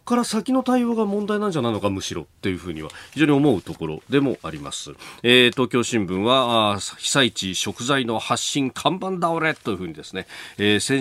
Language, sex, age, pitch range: Japanese, male, 40-59, 105-165 Hz